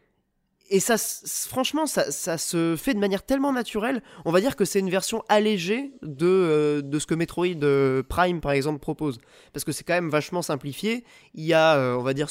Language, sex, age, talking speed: French, male, 20-39, 200 wpm